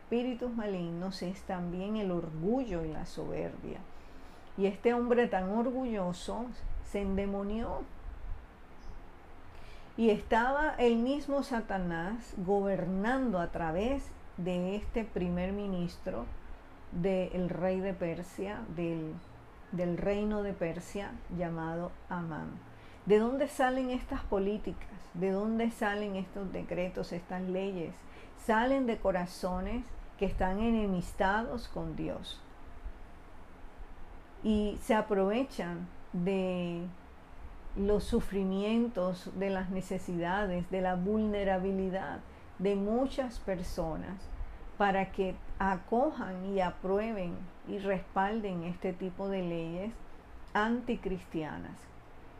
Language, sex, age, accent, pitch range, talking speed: Spanish, female, 50-69, American, 180-220 Hz, 100 wpm